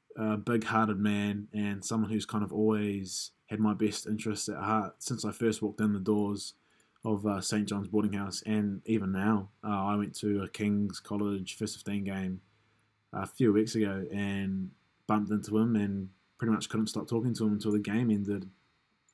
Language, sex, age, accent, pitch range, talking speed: English, male, 20-39, Australian, 100-110 Hz, 190 wpm